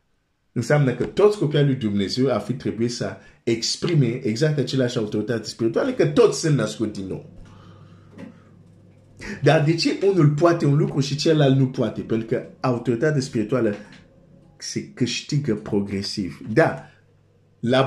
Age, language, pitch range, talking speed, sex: 50-69, Romanian, 100-130 Hz, 140 wpm, male